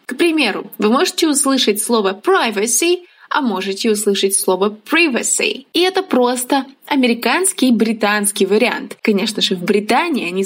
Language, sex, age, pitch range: English, female, 20-39, 210-290 Hz